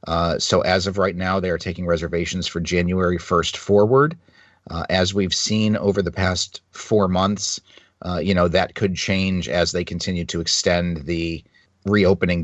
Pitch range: 90-105 Hz